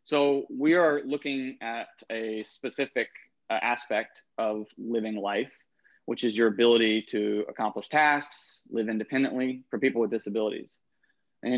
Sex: male